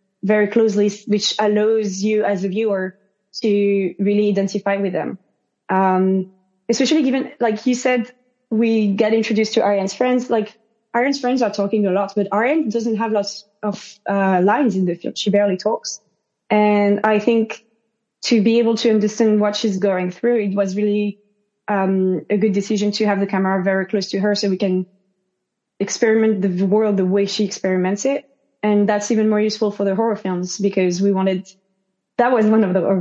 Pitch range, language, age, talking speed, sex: 190-220 Hz, English, 20-39, 185 wpm, female